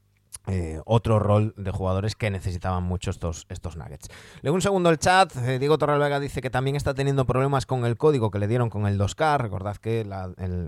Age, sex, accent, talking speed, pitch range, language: 20-39, male, Spanish, 215 wpm, 100-135 Hz, Spanish